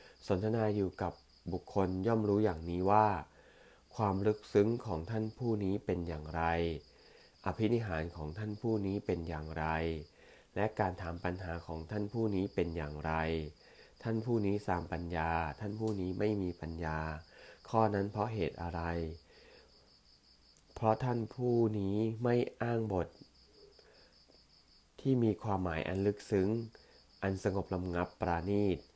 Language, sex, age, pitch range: English, male, 30-49, 85-105 Hz